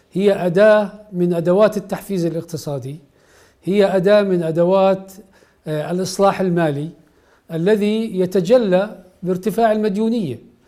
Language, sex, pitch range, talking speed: Arabic, male, 175-205 Hz, 90 wpm